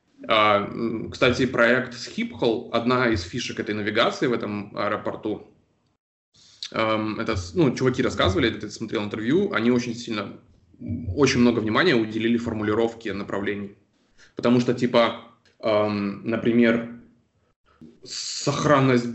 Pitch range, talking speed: 105-125 Hz, 100 wpm